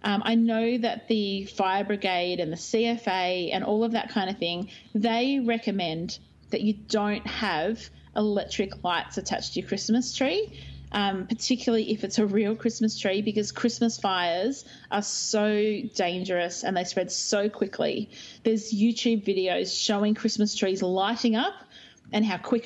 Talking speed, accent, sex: 160 wpm, Australian, female